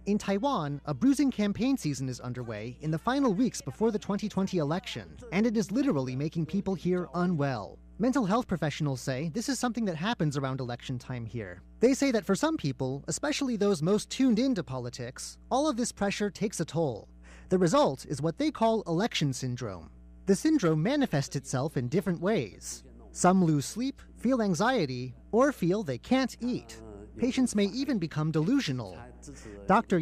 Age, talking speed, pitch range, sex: 30-49, 175 wpm, 140-235 Hz, male